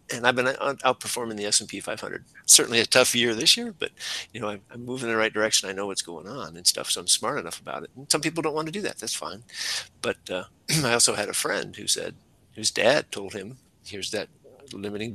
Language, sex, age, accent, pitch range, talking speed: English, male, 50-69, American, 100-125 Hz, 240 wpm